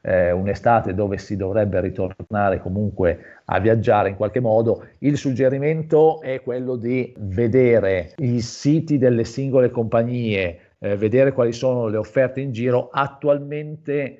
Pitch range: 100-120 Hz